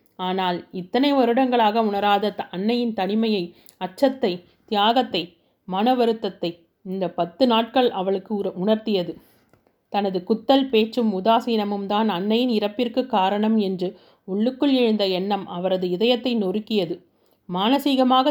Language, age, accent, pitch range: Tamil, 30-49, native, 185-235 Hz